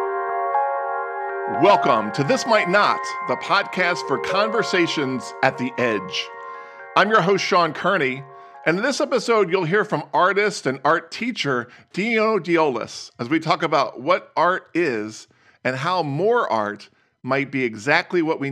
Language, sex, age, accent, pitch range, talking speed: English, male, 50-69, American, 115-175 Hz, 150 wpm